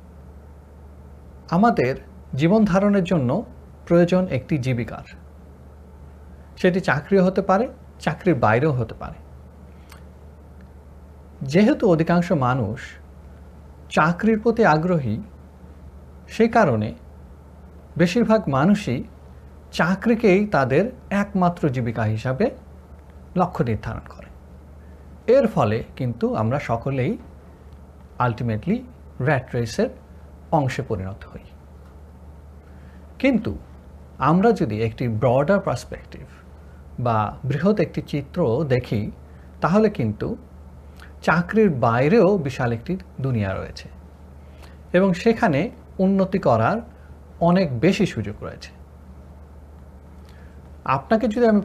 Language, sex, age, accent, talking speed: Bengali, male, 50-69, native, 85 wpm